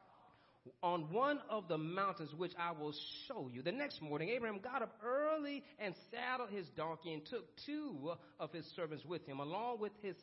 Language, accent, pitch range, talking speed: English, American, 150-235 Hz, 190 wpm